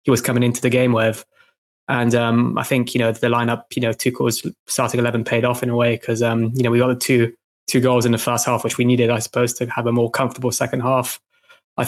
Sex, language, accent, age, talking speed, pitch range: male, English, British, 20-39, 270 wpm, 115-125 Hz